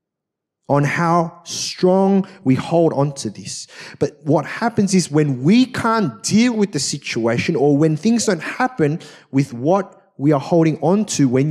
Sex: male